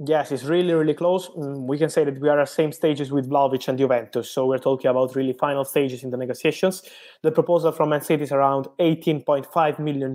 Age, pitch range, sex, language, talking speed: 20-39, 135-155 Hz, male, English, 225 wpm